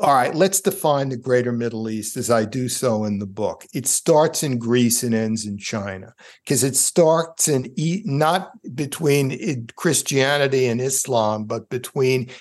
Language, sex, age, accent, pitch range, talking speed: English, male, 60-79, American, 120-145 Hz, 160 wpm